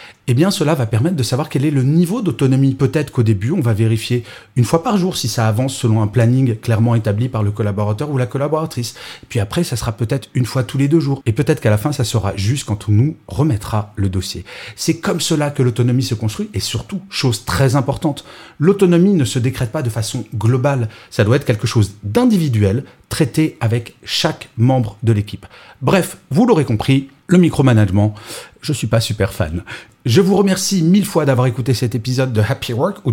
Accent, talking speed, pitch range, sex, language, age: French, 215 wpm, 110-145 Hz, male, French, 30-49